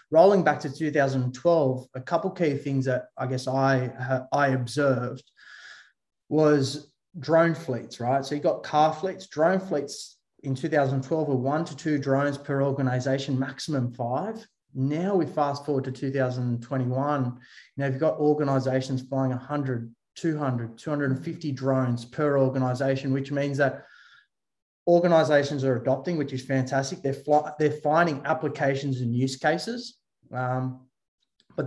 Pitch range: 130-150 Hz